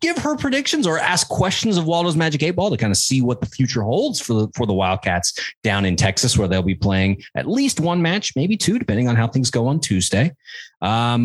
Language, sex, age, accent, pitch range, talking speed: English, male, 30-49, American, 105-165 Hz, 240 wpm